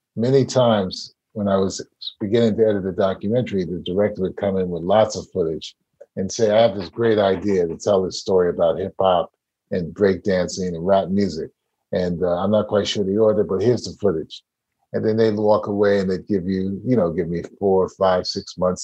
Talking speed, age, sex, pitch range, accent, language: 220 wpm, 50-69, male, 95-115 Hz, American, English